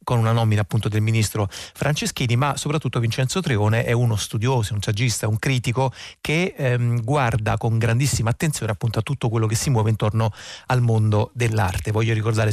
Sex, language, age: male, Italian, 30-49